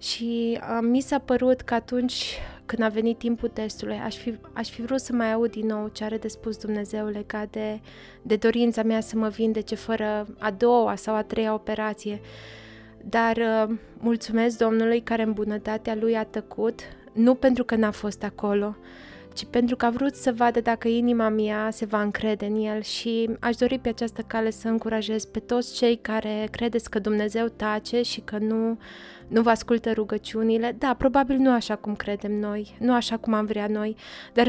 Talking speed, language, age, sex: 190 wpm, Romanian, 20-39, female